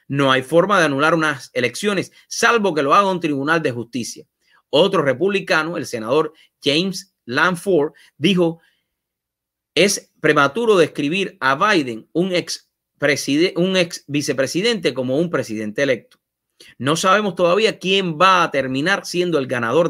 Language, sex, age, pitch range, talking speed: English, male, 30-49, 130-185 Hz, 140 wpm